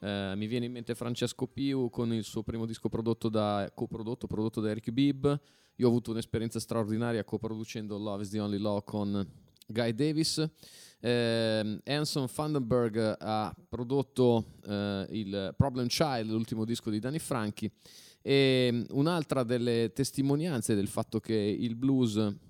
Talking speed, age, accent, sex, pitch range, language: 150 wpm, 30-49, native, male, 110-135 Hz, Italian